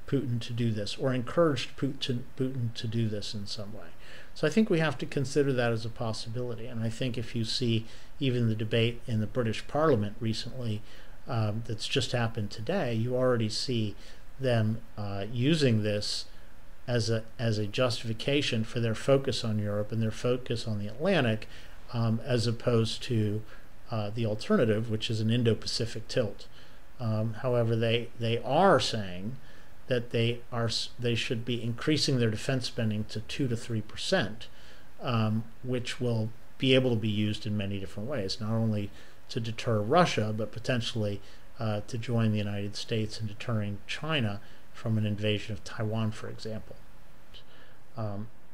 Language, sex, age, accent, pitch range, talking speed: English, male, 50-69, American, 110-125 Hz, 165 wpm